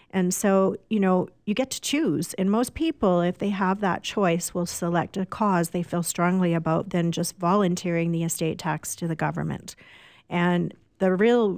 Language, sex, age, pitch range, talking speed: English, female, 40-59, 170-195 Hz, 185 wpm